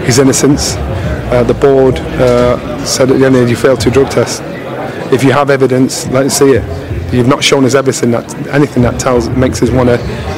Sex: male